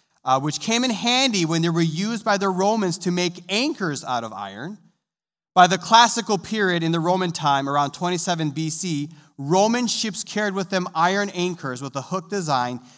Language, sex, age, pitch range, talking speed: English, male, 30-49, 145-195 Hz, 185 wpm